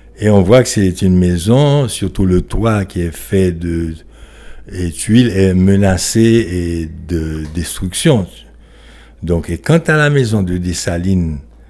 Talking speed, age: 150 wpm, 60-79